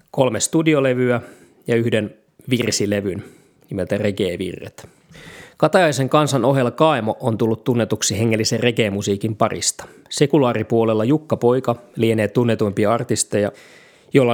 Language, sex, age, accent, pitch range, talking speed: Finnish, male, 20-39, native, 110-130 Hz, 100 wpm